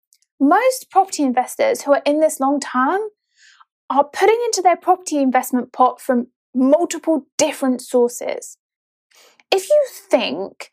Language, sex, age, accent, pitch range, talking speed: English, female, 20-39, British, 255-360 Hz, 130 wpm